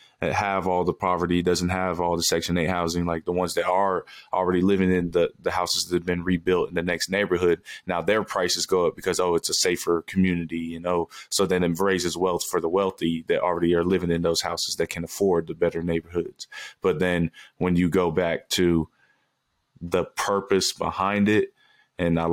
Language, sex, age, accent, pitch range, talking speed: English, male, 20-39, American, 85-95 Hz, 205 wpm